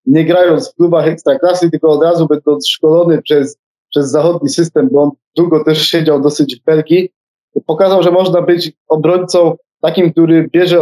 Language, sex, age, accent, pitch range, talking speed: Polish, male, 20-39, native, 155-170 Hz, 165 wpm